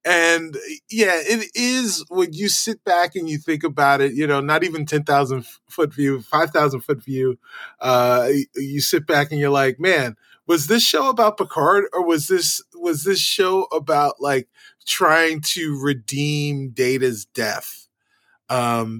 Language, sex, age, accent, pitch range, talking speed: English, male, 20-39, American, 125-165 Hz, 160 wpm